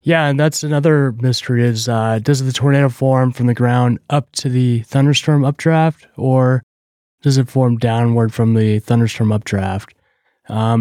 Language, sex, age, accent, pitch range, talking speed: English, male, 20-39, American, 105-125 Hz, 160 wpm